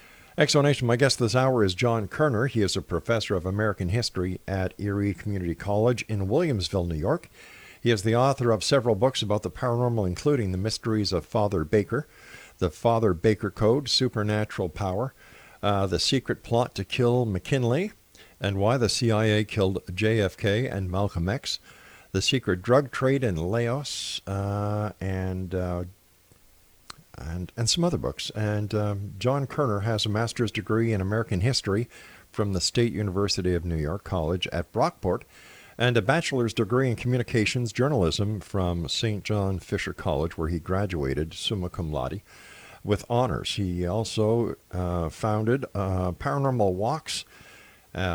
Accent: American